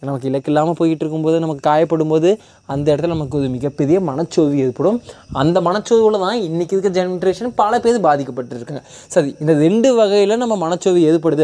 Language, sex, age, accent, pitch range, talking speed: Tamil, male, 20-39, native, 145-195 Hz, 165 wpm